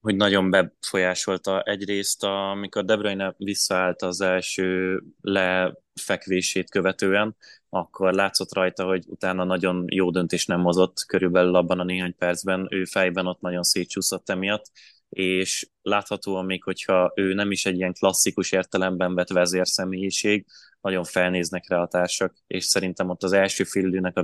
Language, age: Hungarian, 20-39